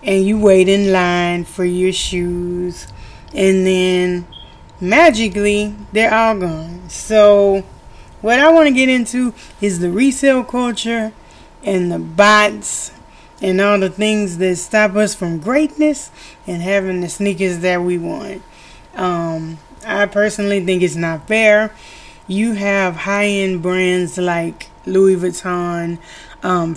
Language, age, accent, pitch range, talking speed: English, 20-39, American, 185-230 Hz, 130 wpm